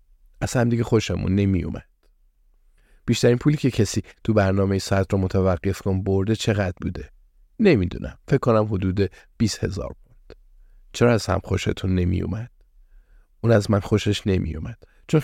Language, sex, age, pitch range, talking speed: Persian, male, 50-69, 90-105 Hz, 155 wpm